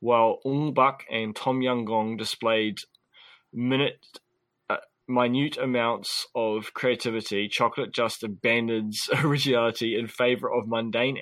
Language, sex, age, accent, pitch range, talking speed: English, male, 20-39, Australian, 110-130 Hz, 120 wpm